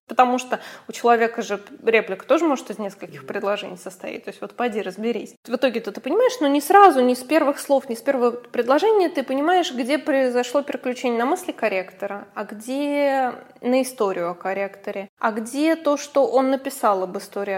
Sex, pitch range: female, 215-285 Hz